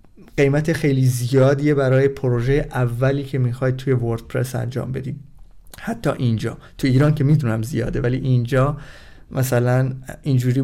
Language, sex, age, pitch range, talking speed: Persian, male, 30-49, 125-150 Hz, 130 wpm